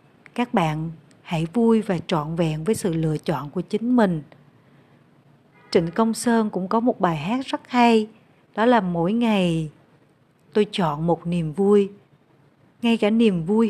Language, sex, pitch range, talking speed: Vietnamese, female, 155-210 Hz, 160 wpm